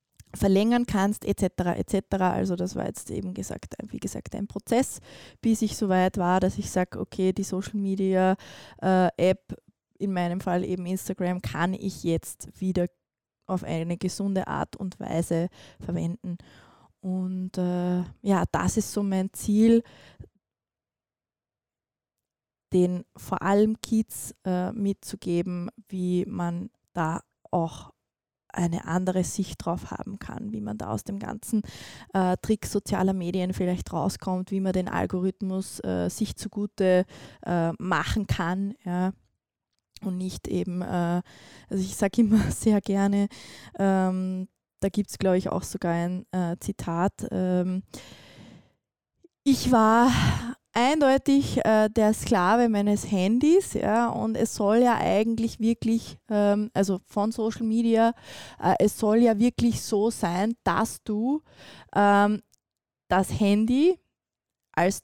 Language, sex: German, female